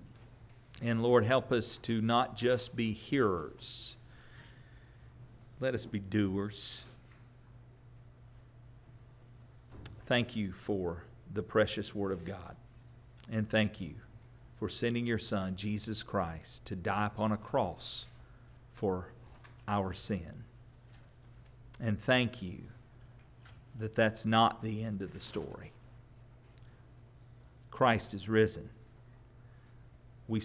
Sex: male